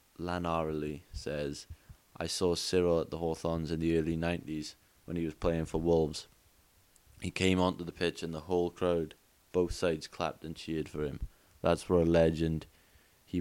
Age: 20-39